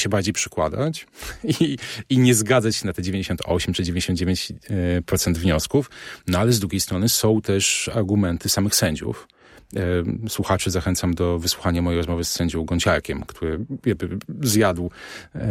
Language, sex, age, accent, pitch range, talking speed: Polish, male, 40-59, native, 95-120 Hz, 135 wpm